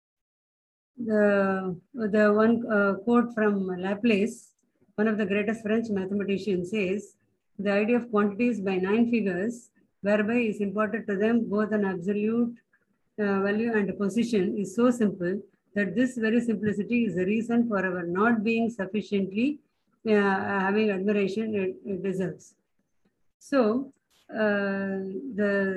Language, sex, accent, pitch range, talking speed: Hindi, female, native, 195-225 Hz, 135 wpm